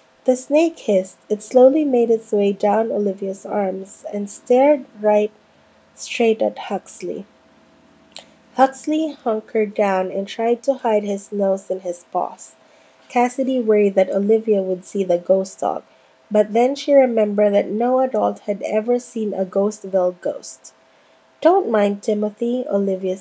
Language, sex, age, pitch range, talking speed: English, female, 20-39, 195-255 Hz, 140 wpm